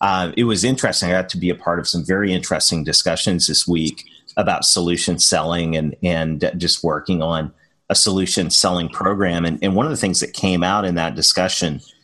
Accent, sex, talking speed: American, male, 205 wpm